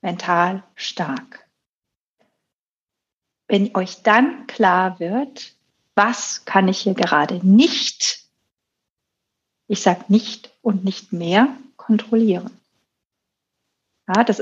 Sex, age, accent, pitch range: female, 40-59, German, 210-255 Hz